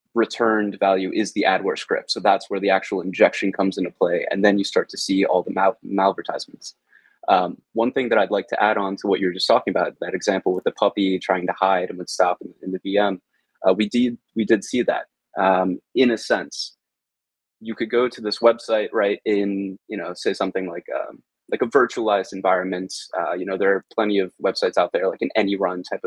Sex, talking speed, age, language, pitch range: male, 230 wpm, 20-39, English, 95-120 Hz